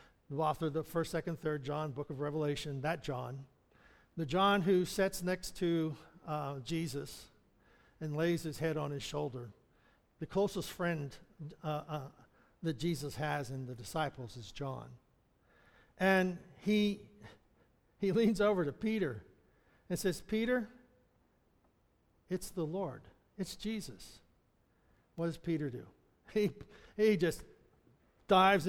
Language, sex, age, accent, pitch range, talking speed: English, male, 60-79, American, 160-230 Hz, 135 wpm